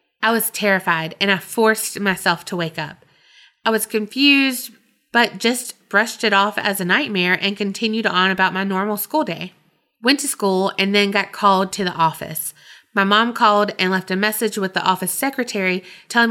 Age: 20-39